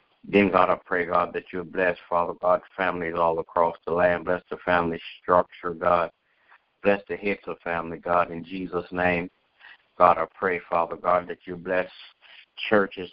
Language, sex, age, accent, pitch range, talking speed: English, male, 60-79, American, 85-95 Hz, 175 wpm